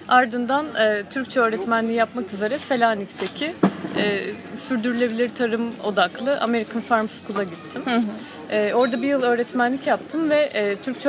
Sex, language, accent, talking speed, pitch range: female, Turkish, native, 130 wpm, 200-250 Hz